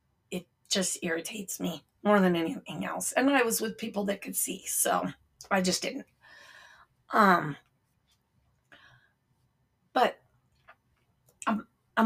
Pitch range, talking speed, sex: 185-235 Hz, 110 wpm, female